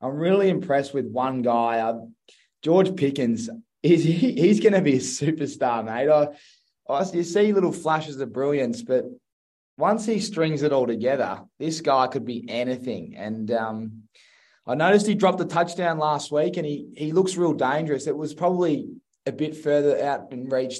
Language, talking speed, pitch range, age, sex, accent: English, 180 wpm, 125-165 Hz, 20-39, male, Australian